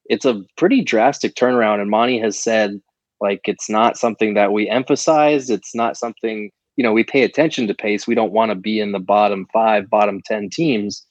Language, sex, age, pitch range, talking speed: English, male, 20-39, 105-120 Hz, 205 wpm